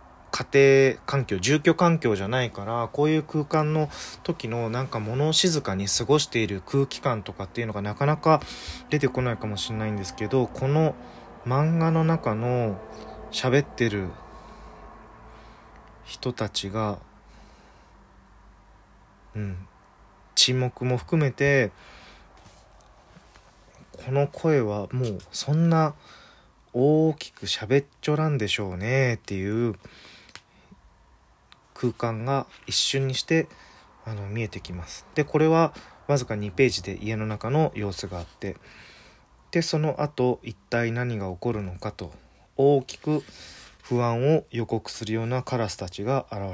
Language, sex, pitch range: Japanese, male, 105-140 Hz